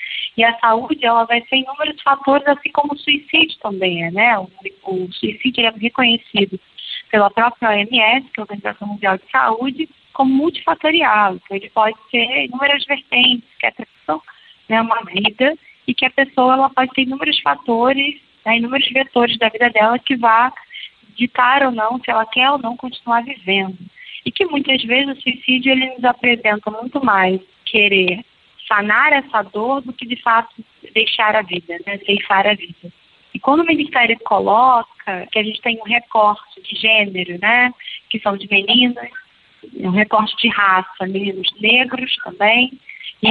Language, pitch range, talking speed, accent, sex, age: Portuguese, 200-255 Hz, 170 wpm, Brazilian, female, 20-39